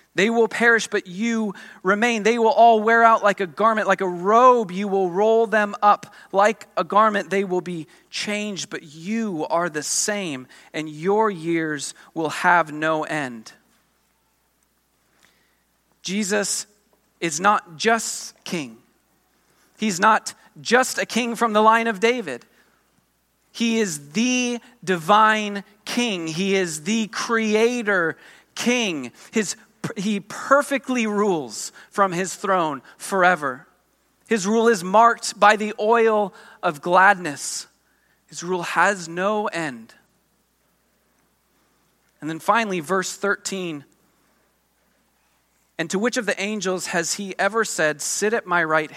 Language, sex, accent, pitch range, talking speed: English, male, American, 165-220 Hz, 130 wpm